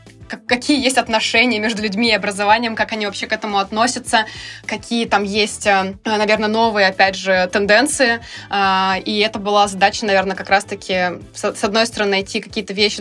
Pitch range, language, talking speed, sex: 200-245 Hz, Russian, 155 wpm, female